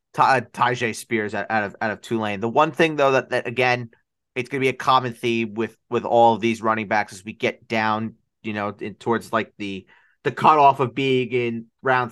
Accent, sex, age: American, male, 30-49